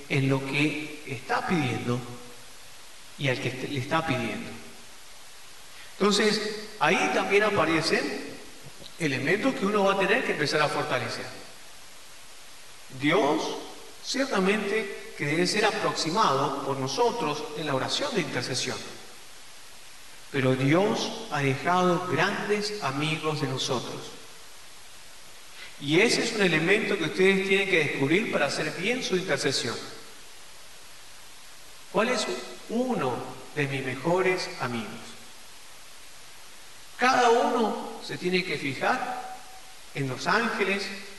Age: 50-69